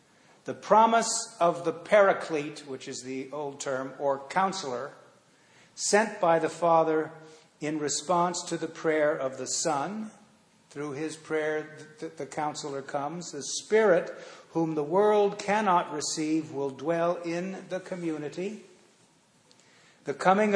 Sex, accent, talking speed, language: male, American, 130 wpm, English